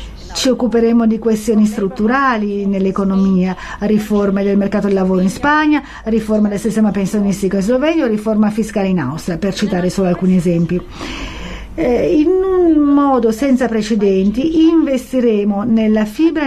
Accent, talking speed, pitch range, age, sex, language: native, 135 wpm, 205-255 Hz, 40-59, female, Italian